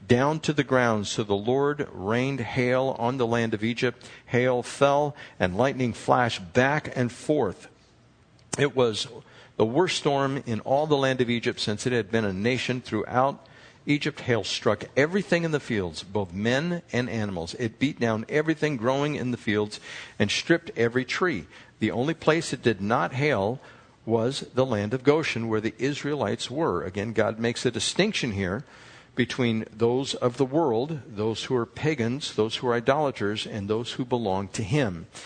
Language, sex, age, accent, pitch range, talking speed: English, male, 60-79, American, 110-145 Hz, 175 wpm